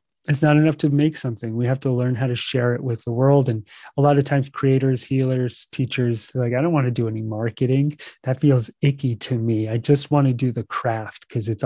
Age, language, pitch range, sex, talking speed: 30-49, English, 120-140 Hz, male, 240 wpm